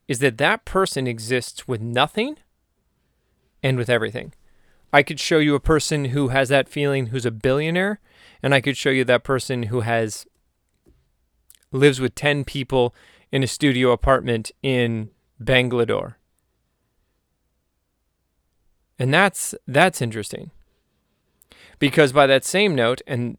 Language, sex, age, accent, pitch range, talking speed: English, male, 30-49, American, 120-155 Hz, 135 wpm